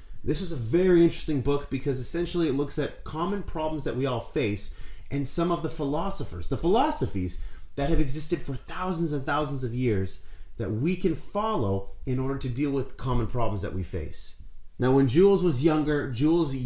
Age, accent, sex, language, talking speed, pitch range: 30-49, American, male, English, 190 wpm, 105-155 Hz